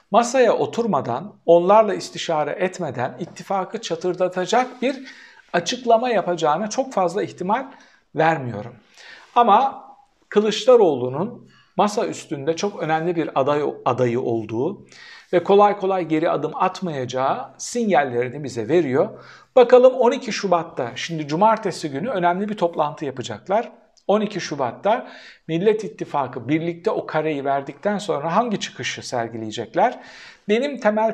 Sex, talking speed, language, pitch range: male, 110 wpm, Turkish, 140-215 Hz